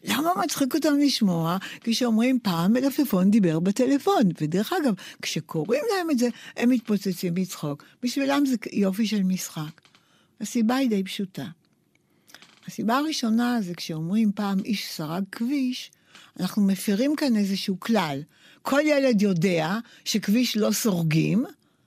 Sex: female